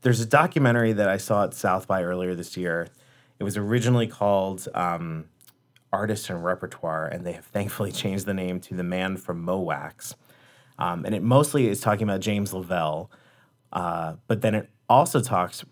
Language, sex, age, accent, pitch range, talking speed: English, male, 30-49, American, 90-110 Hz, 185 wpm